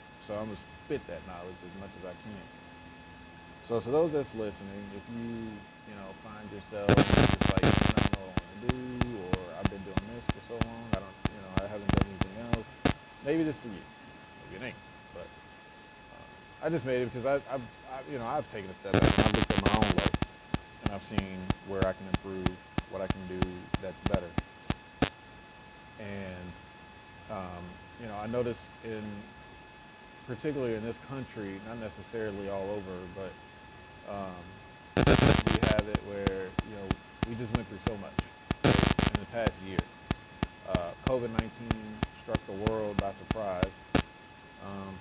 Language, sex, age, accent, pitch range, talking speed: English, male, 30-49, American, 95-115 Hz, 180 wpm